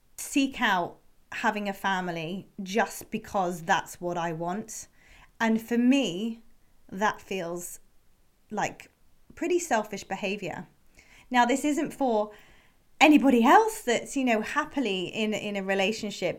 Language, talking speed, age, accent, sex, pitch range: English, 125 wpm, 30-49, British, female, 190-235 Hz